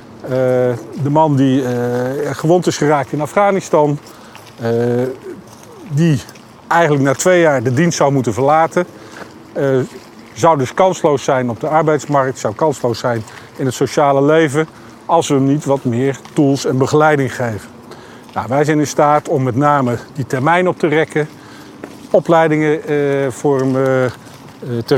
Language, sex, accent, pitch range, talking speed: Dutch, male, Dutch, 125-160 Hz, 140 wpm